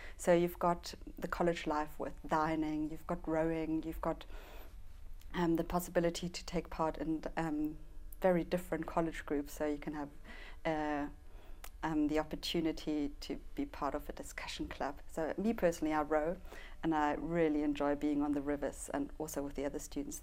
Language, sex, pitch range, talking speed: English, female, 150-175 Hz, 175 wpm